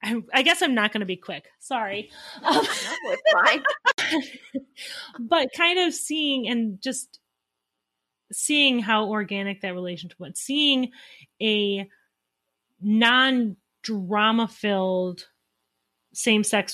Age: 30-49